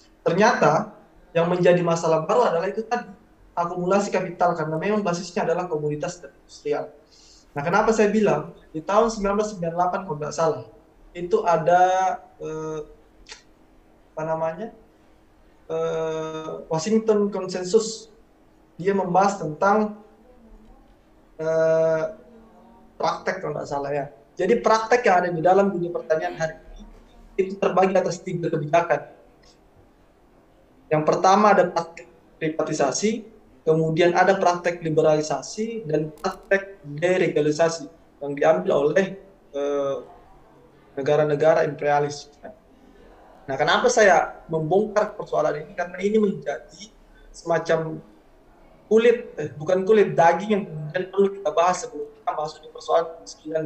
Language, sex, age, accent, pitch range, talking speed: Indonesian, male, 20-39, native, 155-195 Hz, 115 wpm